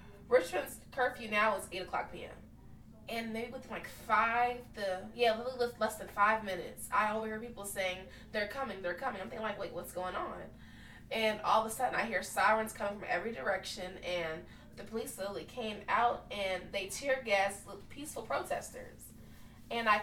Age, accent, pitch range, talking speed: 20-39, American, 185-230 Hz, 180 wpm